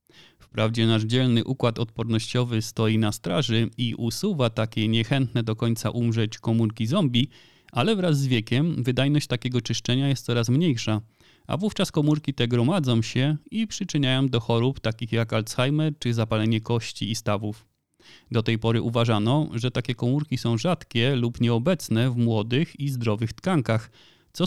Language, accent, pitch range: Polish, native, 115-140 Hz